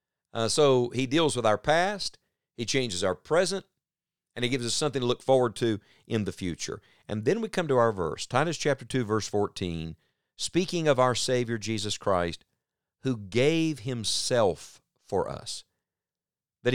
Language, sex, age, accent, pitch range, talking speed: English, male, 50-69, American, 100-140 Hz, 170 wpm